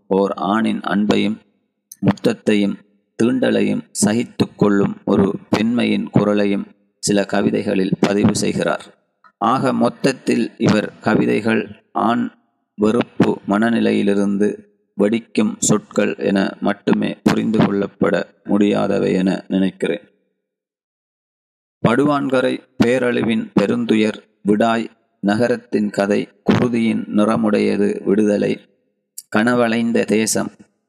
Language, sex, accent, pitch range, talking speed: Tamil, male, native, 100-110 Hz, 80 wpm